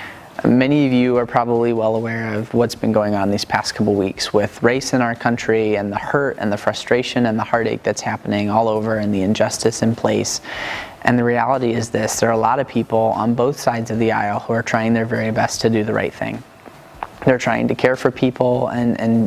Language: English